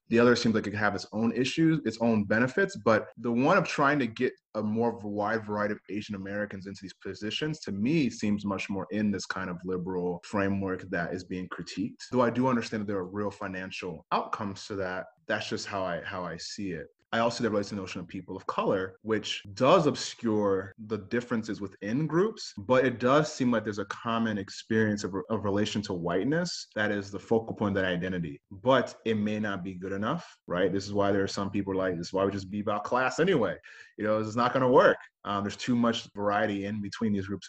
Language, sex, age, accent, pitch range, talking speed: English, male, 30-49, American, 95-115 Hz, 240 wpm